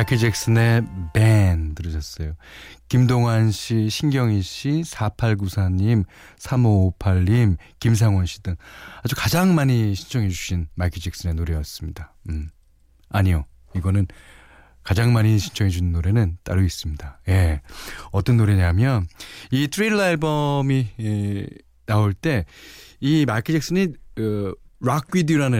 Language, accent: Korean, native